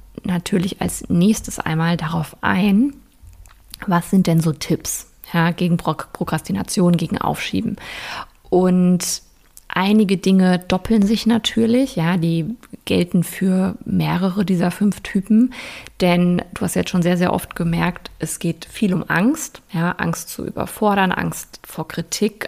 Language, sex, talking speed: German, female, 135 wpm